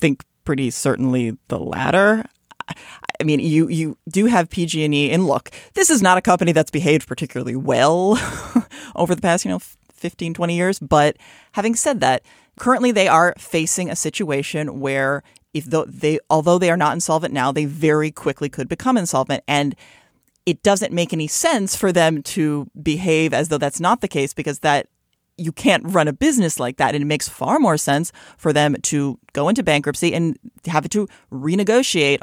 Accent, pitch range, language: American, 145-180 Hz, English